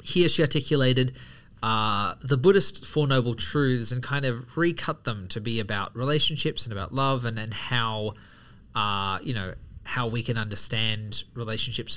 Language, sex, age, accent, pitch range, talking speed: English, male, 20-39, Australian, 110-145 Hz, 160 wpm